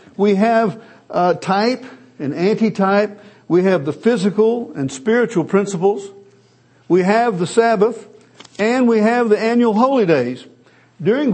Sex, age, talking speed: male, 60-79, 130 wpm